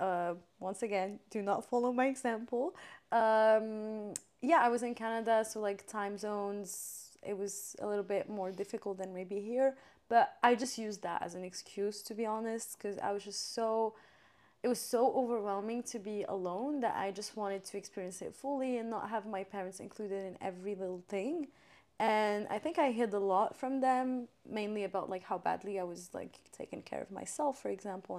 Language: Arabic